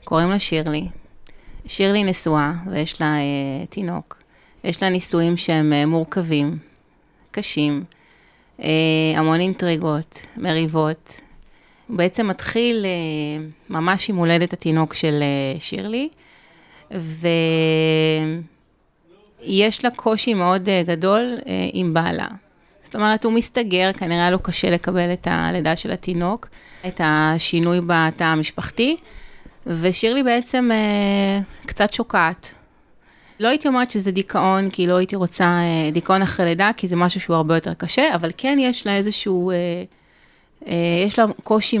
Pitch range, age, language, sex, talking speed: 160-200 Hz, 30-49, Hebrew, female, 130 wpm